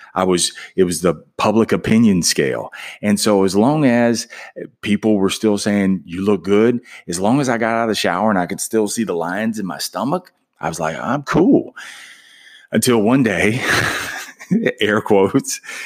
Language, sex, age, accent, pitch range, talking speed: English, male, 30-49, American, 85-110 Hz, 185 wpm